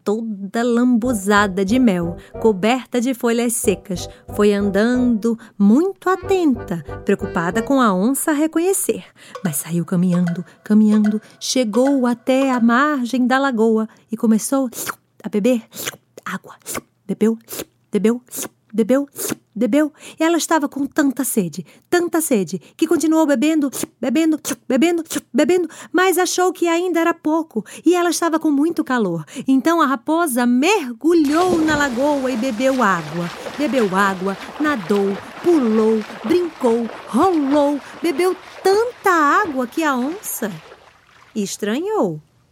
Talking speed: 120 wpm